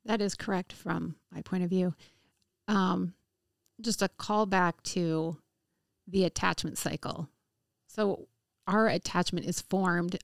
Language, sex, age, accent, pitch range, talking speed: English, female, 30-49, American, 165-195 Hz, 130 wpm